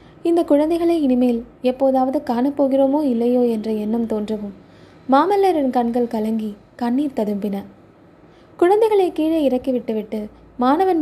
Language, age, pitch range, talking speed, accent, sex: Tamil, 20-39, 225-270 Hz, 100 wpm, native, female